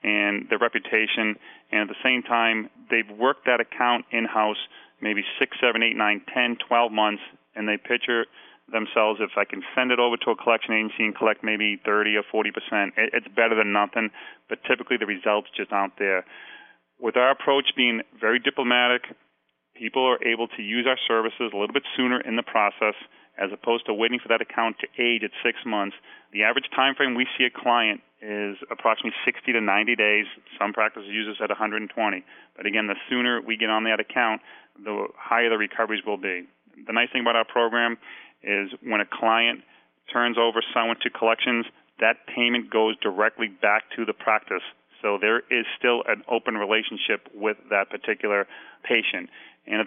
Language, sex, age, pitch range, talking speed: English, male, 30-49, 105-120 Hz, 185 wpm